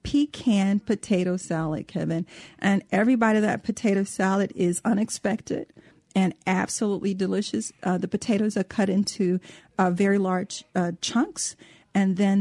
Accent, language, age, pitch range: American, English, 40-59, 185-220 Hz